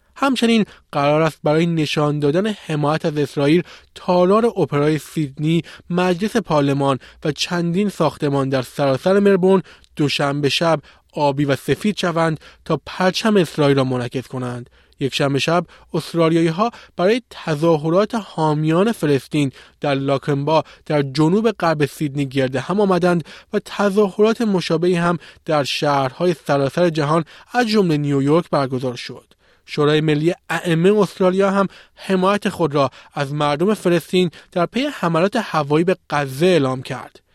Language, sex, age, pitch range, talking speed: Persian, male, 20-39, 145-185 Hz, 130 wpm